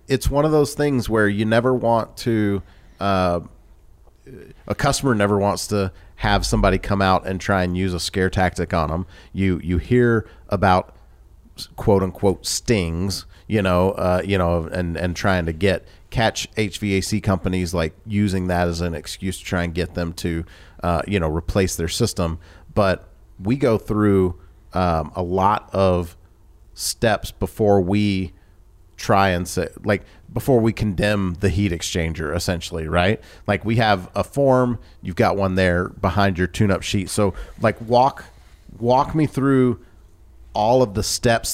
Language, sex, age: English, male, 40-59